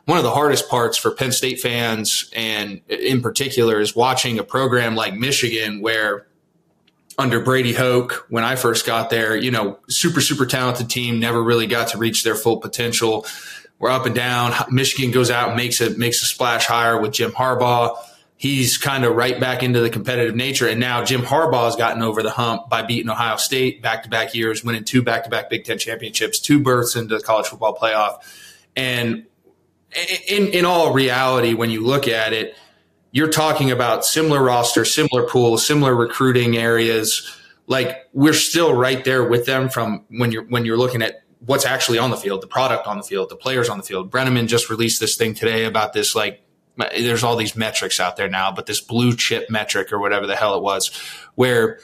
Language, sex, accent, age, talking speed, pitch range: English, male, American, 20-39, 200 wpm, 115-130 Hz